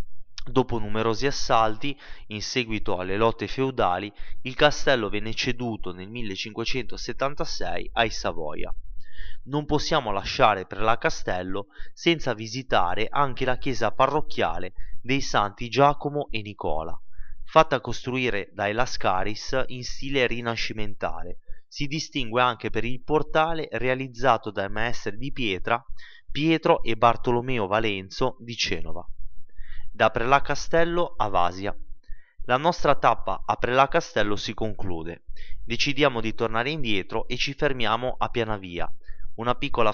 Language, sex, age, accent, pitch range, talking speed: Italian, male, 20-39, native, 105-140 Hz, 125 wpm